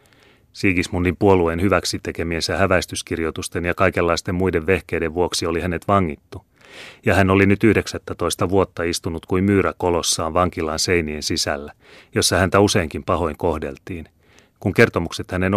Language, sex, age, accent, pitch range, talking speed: Finnish, male, 30-49, native, 85-100 Hz, 125 wpm